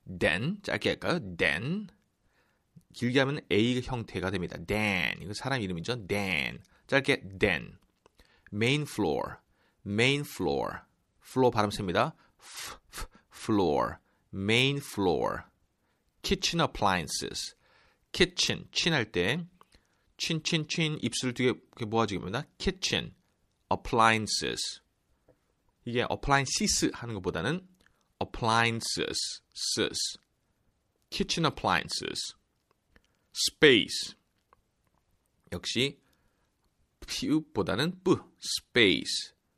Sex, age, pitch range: male, 30-49, 105-160 Hz